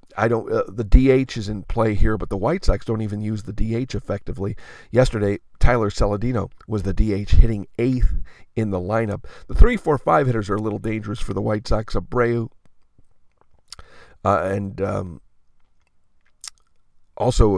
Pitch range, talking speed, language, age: 100-120 Hz, 165 wpm, English, 50-69